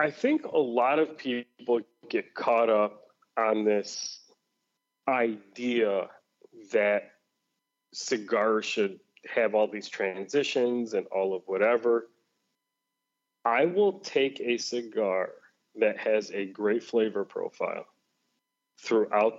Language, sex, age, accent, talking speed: English, male, 30-49, American, 110 wpm